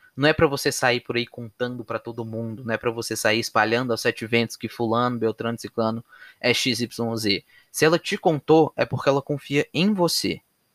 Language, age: Portuguese, 20-39